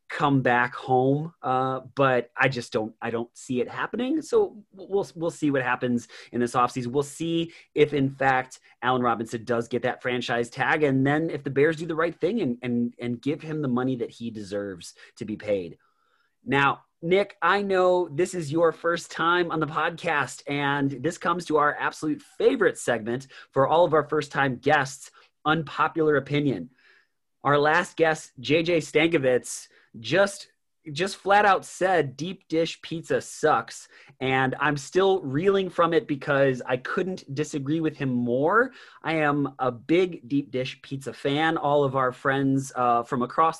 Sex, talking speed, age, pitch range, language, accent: male, 175 wpm, 30-49, 130-165 Hz, English, American